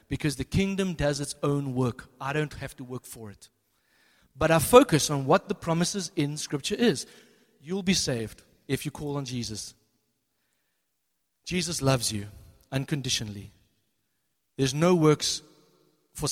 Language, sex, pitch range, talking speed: English, male, 135-185 Hz, 145 wpm